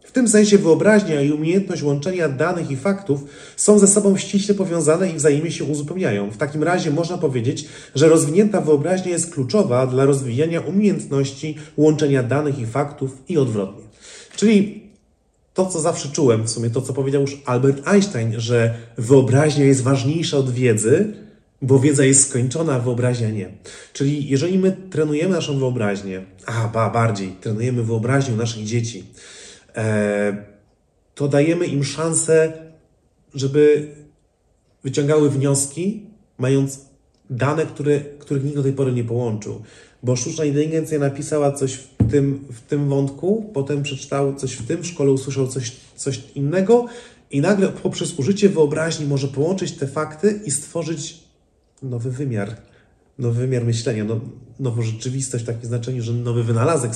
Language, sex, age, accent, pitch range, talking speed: Polish, male, 30-49, native, 125-160 Hz, 145 wpm